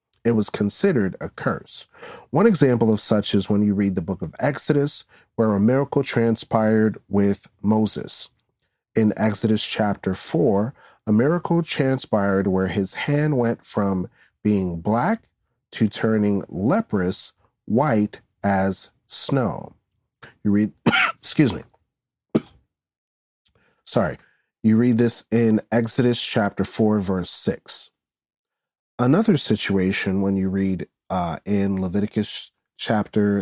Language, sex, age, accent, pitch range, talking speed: English, male, 40-59, American, 100-125 Hz, 120 wpm